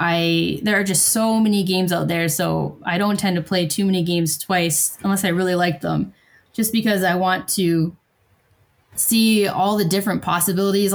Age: 10-29